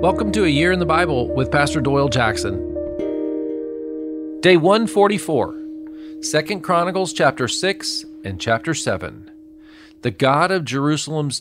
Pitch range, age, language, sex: 110-165 Hz, 40-59, English, male